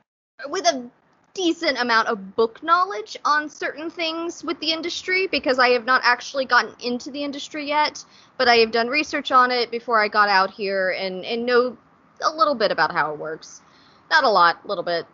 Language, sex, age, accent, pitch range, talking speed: English, female, 20-39, American, 200-270 Hz, 200 wpm